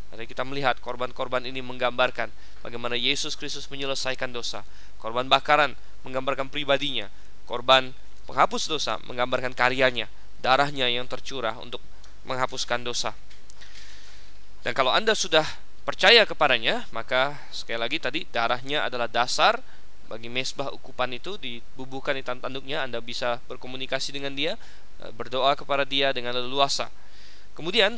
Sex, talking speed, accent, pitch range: male, 120 wpm, native, 120-140 Hz